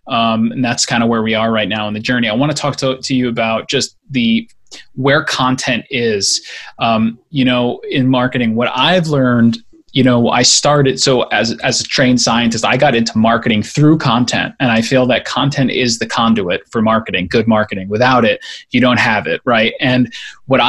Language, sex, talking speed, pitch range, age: English, male, 205 wpm, 115-140 Hz, 20-39